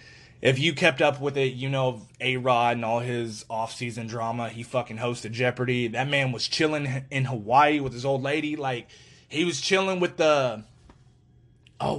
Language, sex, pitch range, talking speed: English, male, 125-150 Hz, 175 wpm